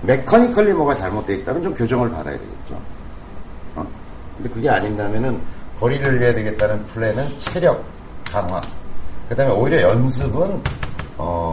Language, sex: Korean, male